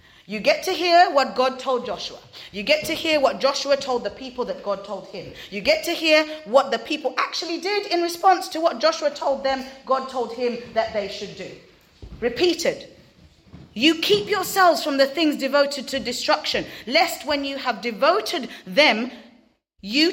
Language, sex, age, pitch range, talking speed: English, female, 30-49, 190-280 Hz, 180 wpm